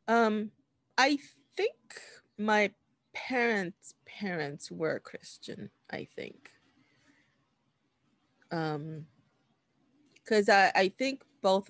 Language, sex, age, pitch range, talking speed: English, female, 20-39, 170-215 Hz, 80 wpm